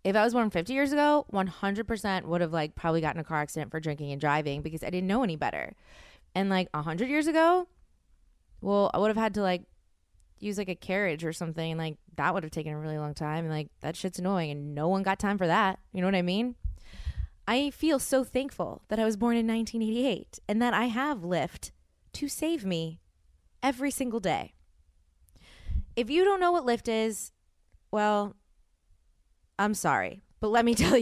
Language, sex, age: English, female, 20-39